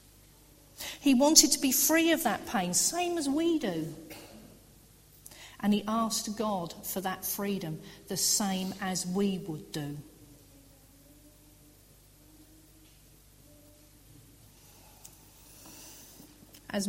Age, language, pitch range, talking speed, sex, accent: 40-59, English, 155-235 Hz, 90 wpm, female, British